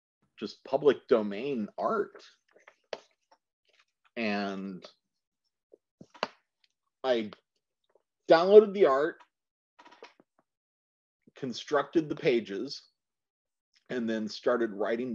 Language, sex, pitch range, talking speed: English, male, 105-150 Hz, 65 wpm